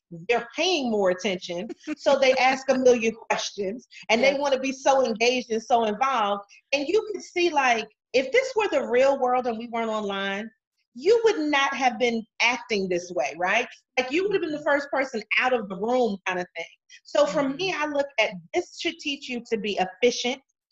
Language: English